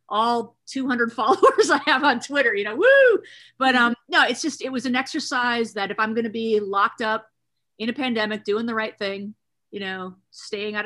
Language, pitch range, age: English, 190-235 Hz, 30-49